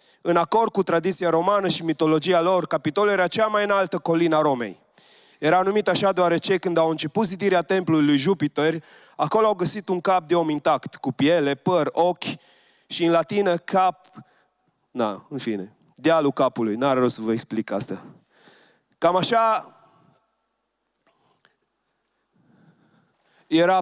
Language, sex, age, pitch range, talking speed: Romanian, male, 30-49, 155-185 Hz, 145 wpm